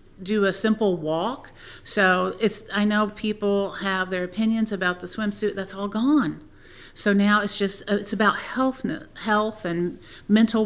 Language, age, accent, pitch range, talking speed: English, 50-69, American, 165-205 Hz, 160 wpm